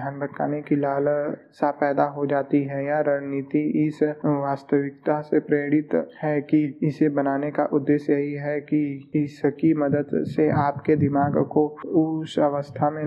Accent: native